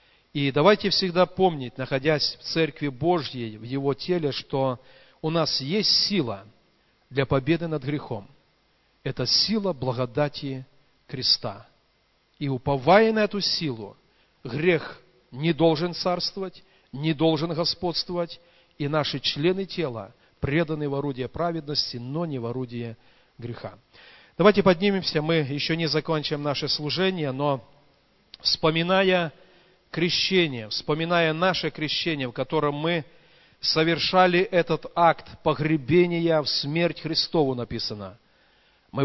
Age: 40-59